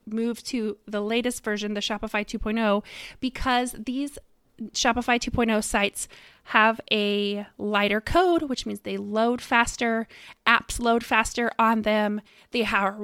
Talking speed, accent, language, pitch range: 135 wpm, American, English, 210-245 Hz